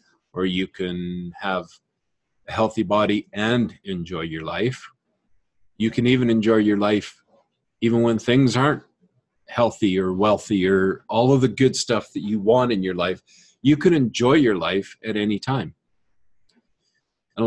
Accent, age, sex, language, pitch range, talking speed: American, 40-59, male, English, 95-125 Hz, 155 wpm